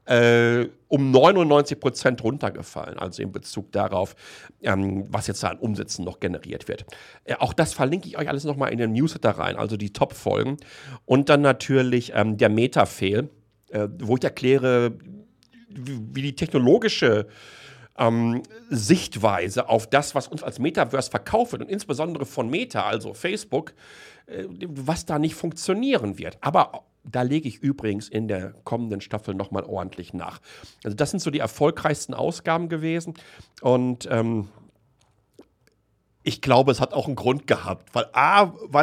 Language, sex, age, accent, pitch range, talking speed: German, male, 40-59, German, 105-145 Hz, 160 wpm